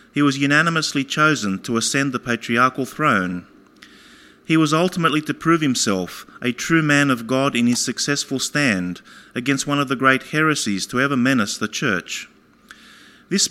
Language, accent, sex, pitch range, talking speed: English, Australian, male, 115-150 Hz, 160 wpm